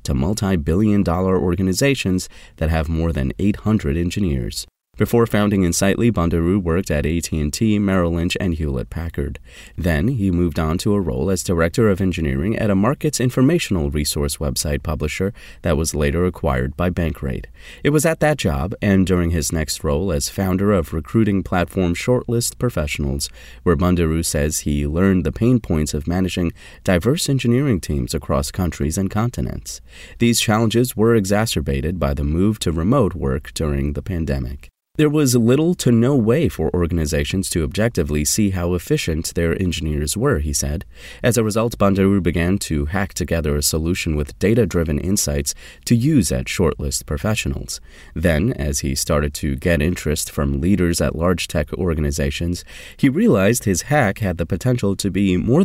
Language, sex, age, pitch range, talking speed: English, male, 30-49, 75-105 Hz, 165 wpm